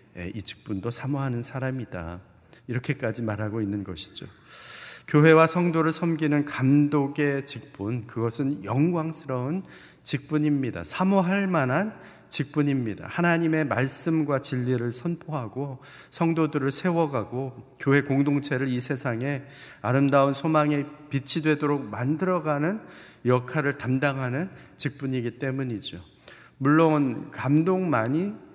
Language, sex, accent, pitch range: Korean, male, native, 125-155 Hz